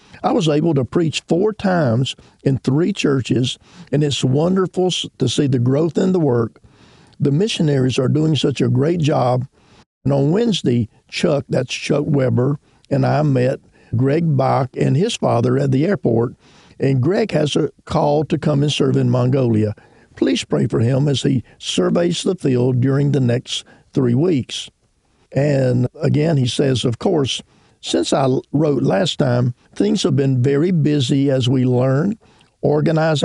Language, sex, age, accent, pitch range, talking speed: English, male, 50-69, American, 130-155 Hz, 165 wpm